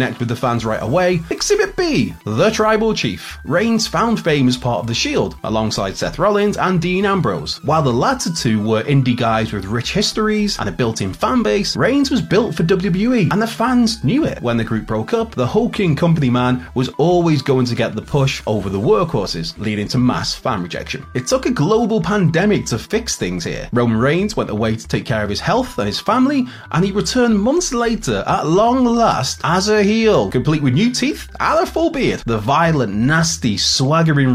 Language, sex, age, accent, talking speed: English, male, 30-49, British, 205 wpm